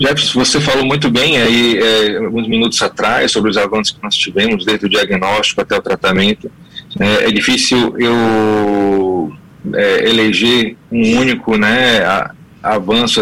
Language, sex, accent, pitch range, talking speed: Portuguese, male, Brazilian, 110-135 Hz, 145 wpm